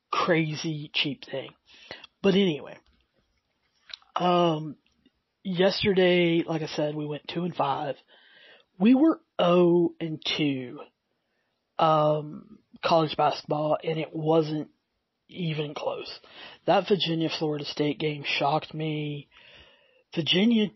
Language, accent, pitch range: English, American, 155-180 Hz